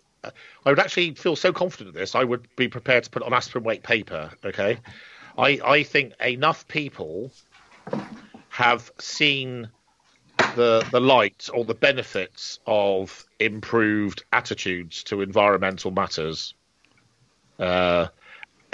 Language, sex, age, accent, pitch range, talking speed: English, male, 50-69, British, 105-130 Hz, 130 wpm